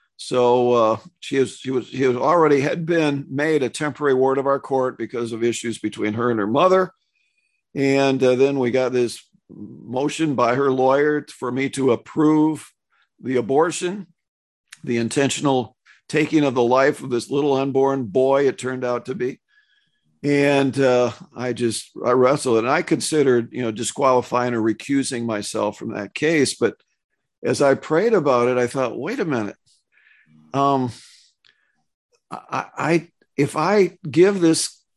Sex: male